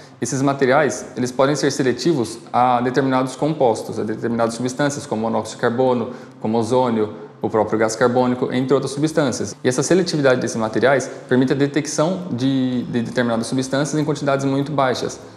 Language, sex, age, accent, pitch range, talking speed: Portuguese, male, 20-39, Brazilian, 115-135 Hz, 165 wpm